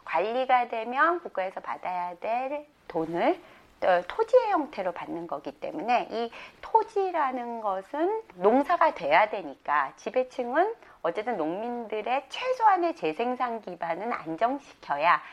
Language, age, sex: Korean, 30-49, female